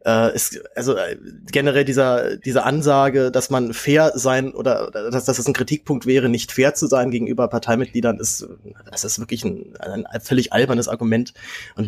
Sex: male